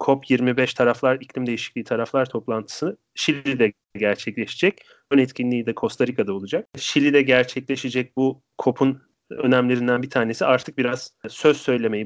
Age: 30-49